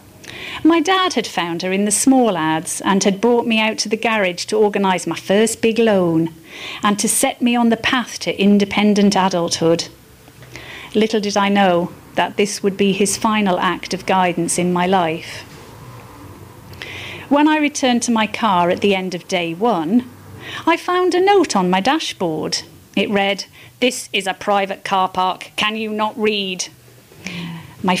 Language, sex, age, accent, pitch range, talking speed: English, female, 40-59, British, 180-235 Hz, 175 wpm